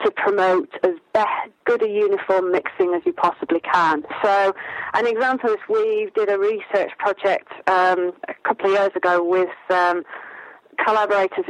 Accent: British